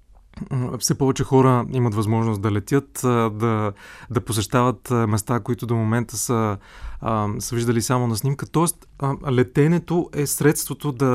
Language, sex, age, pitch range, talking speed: Bulgarian, male, 20-39, 115-135 Hz, 145 wpm